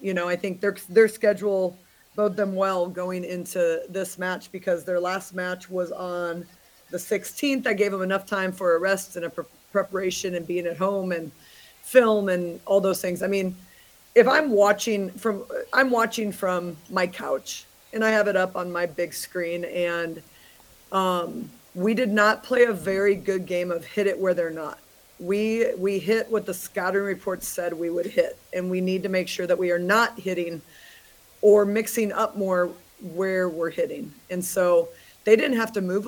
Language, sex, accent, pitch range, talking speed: English, female, American, 180-205 Hz, 195 wpm